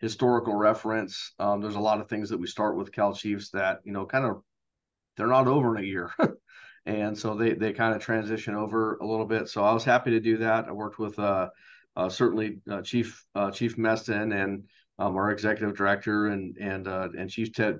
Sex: male